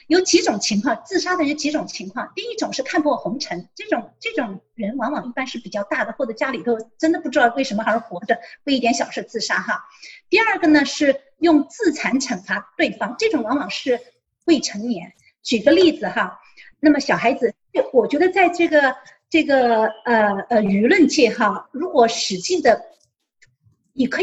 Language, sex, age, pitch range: Chinese, female, 50-69, 235-340 Hz